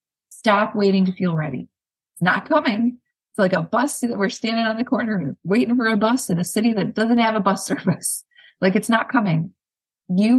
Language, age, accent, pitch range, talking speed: English, 30-49, American, 175-235 Hz, 215 wpm